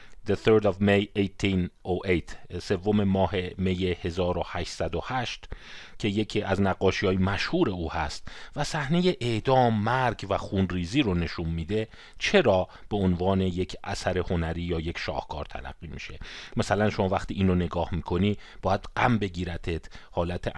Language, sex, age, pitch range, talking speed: Persian, male, 40-59, 90-115 Hz, 135 wpm